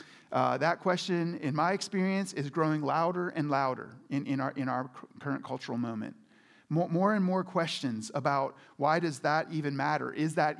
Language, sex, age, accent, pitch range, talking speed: English, male, 40-59, American, 155-225 Hz, 180 wpm